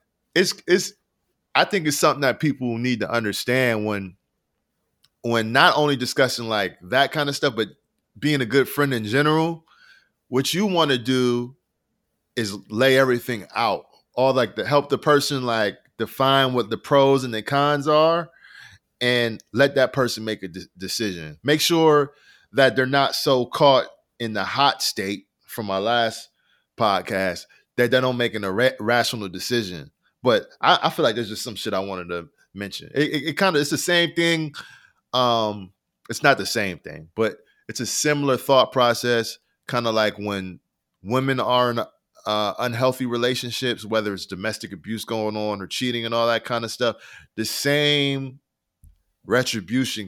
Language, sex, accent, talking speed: English, male, American, 175 wpm